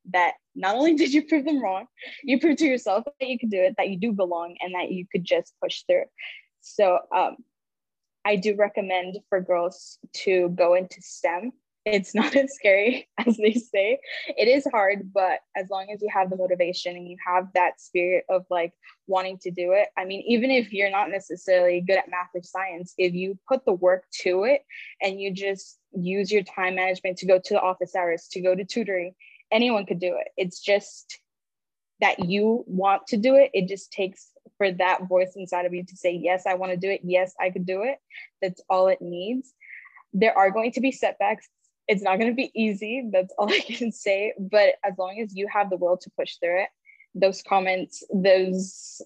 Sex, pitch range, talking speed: female, 185-225 Hz, 215 wpm